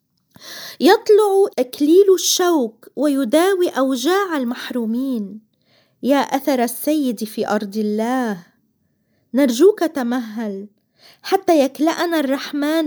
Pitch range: 225-300 Hz